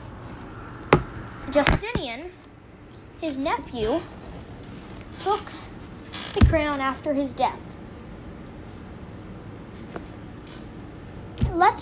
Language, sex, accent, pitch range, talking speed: English, female, American, 290-355 Hz, 50 wpm